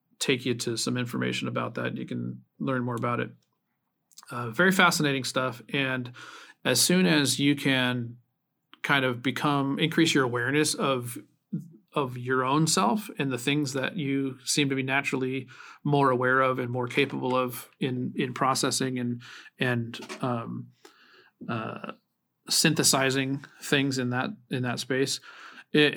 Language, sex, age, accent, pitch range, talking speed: English, male, 40-59, American, 120-140 Hz, 150 wpm